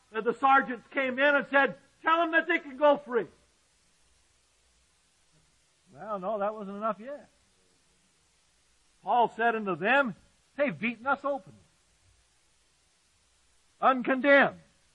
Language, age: English, 50-69